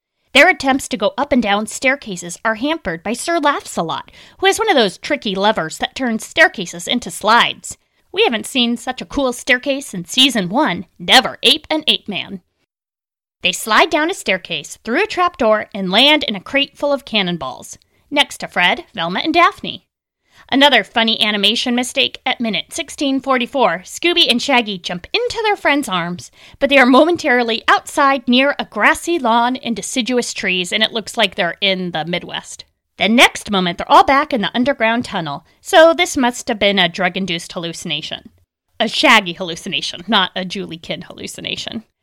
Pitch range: 195-285 Hz